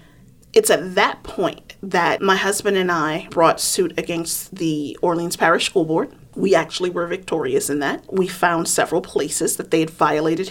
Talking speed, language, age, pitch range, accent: 175 wpm, English, 30-49, 165-195 Hz, American